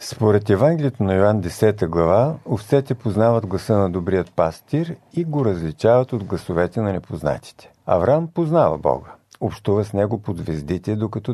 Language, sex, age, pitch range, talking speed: Bulgarian, male, 50-69, 95-130 Hz, 150 wpm